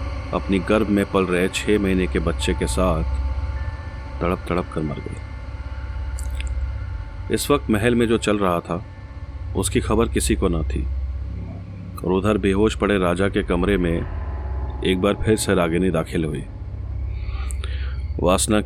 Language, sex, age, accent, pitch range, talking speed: Hindi, male, 30-49, native, 80-100 Hz, 150 wpm